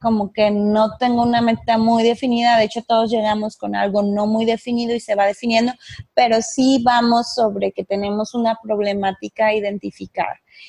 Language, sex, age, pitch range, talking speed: English, female, 20-39, 215-245 Hz, 175 wpm